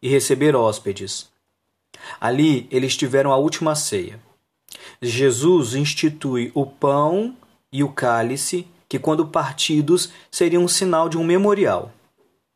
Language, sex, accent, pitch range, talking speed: Portuguese, male, Brazilian, 125-160 Hz, 120 wpm